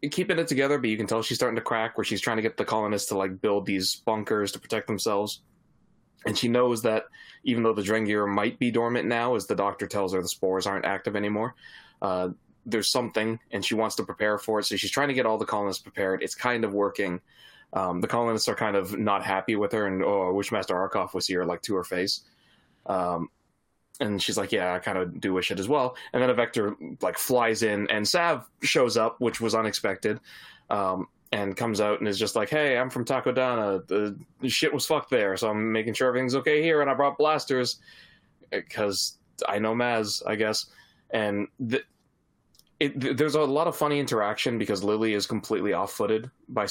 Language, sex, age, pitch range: English, male, 20-39, 100-120 Hz